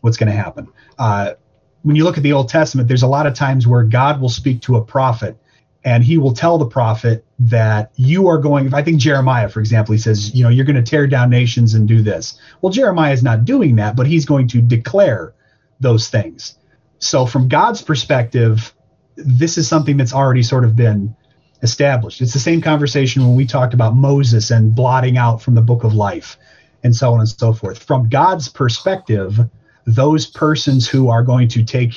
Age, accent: 30-49, American